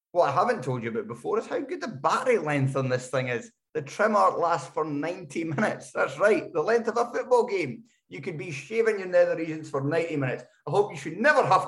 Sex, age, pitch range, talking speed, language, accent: male, 20-39, 130-160 Hz, 245 wpm, English, British